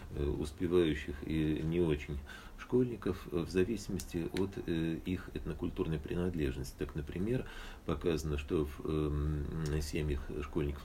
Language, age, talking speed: Russian, 40-59, 110 wpm